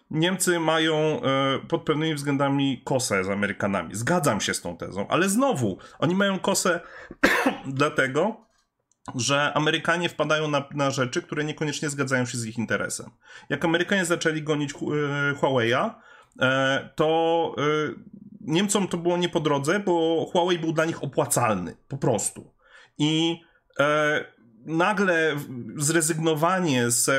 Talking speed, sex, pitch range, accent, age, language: 125 wpm, male, 130-165 Hz, native, 30-49, Polish